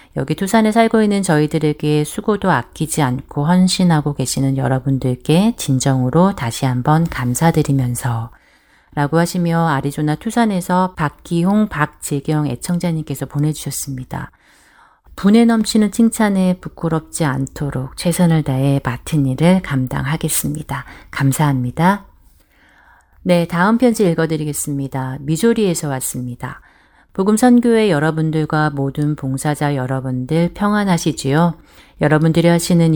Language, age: Korean, 40-59